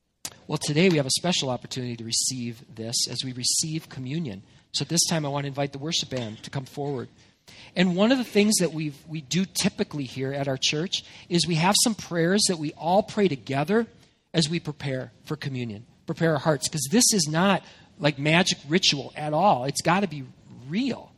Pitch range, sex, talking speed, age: 145-195 Hz, male, 205 wpm, 40-59